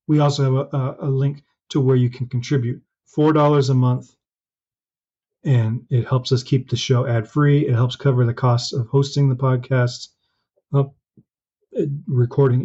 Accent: American